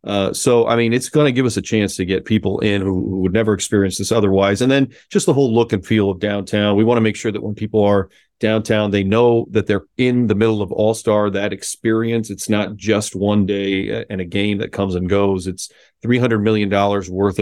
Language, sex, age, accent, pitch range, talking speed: English, male, 40-59, American, 100-120 Hz, 240 wpm